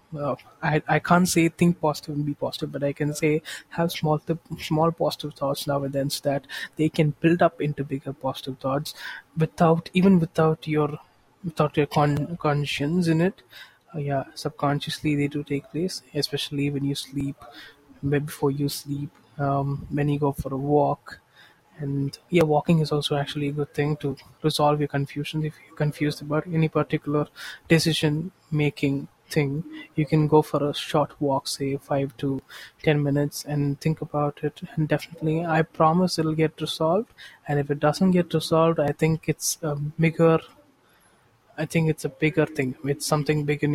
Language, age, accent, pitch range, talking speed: English, 20-39, Indian, 145-160 Hz, 180 wpm